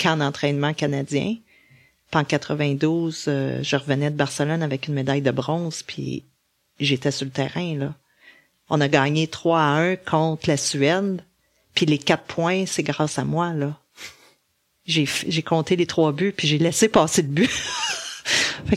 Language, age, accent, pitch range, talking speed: French, 40-59, Canadian, 145-180 Hz, 170 wpm